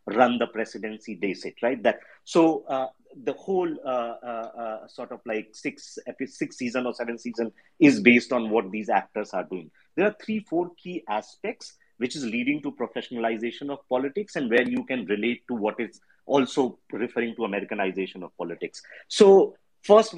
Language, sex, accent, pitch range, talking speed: English, male, Indian, 110-170 Hz, 180 wpm